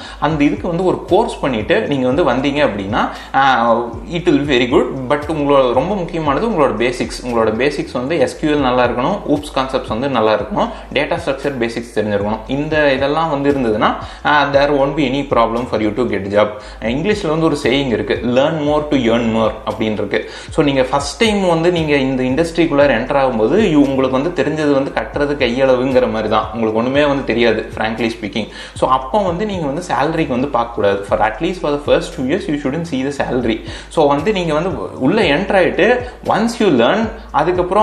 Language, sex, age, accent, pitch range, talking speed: Tamil, male, 30-49, native, 125-165 Hz, 50 wpm